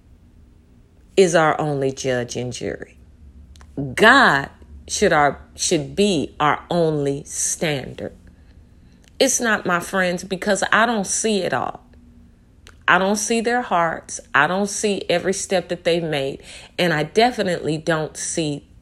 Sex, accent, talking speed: female, American, 135 wpm